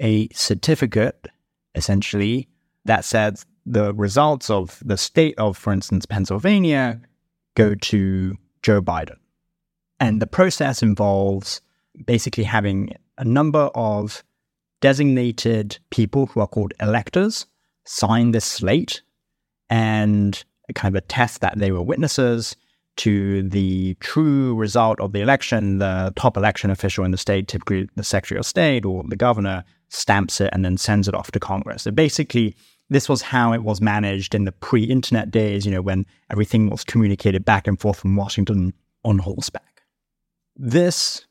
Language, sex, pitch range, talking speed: English, male, 100-120 Hz, 150 wpm